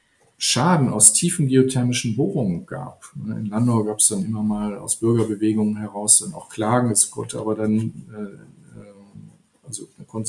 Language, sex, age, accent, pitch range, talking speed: German, male, 40-59, German, 110-135 Hz, 145 wpm